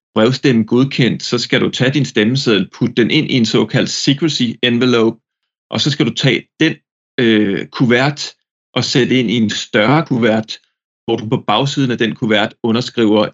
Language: English